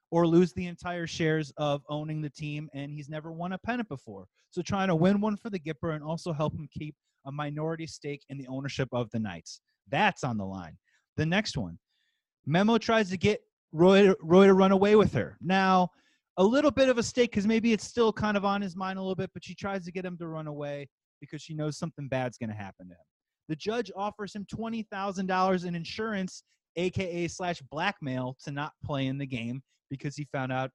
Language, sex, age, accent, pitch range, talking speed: English, male, 30-49, American, 140-195 Hz, 225 wpm